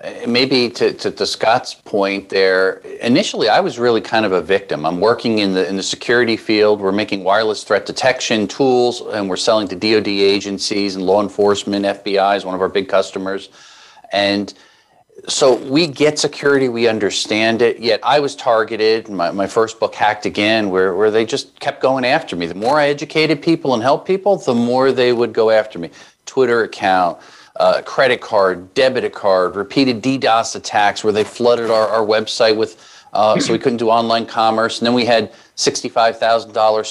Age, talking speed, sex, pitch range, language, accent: 50-69, 185 wpm, male, 105-130 Hz, English, American